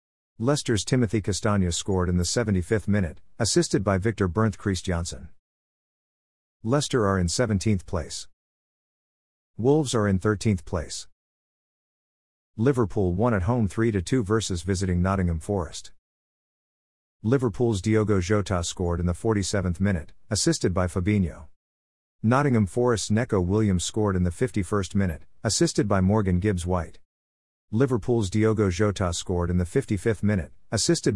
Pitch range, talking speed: 90-110 Hz, 125 wpm